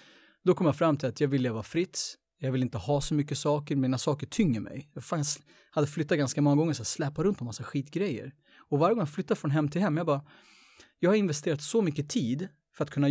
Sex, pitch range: male, 130-155 Hz